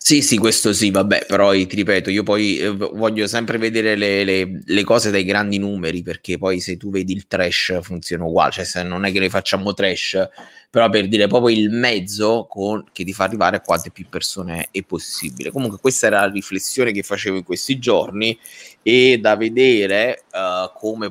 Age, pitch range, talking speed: 20-39, 95-115 Hz, 200 wpm